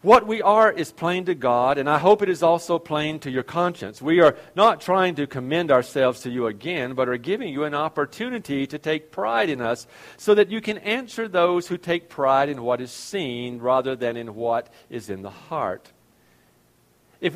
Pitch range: 115-180 Hz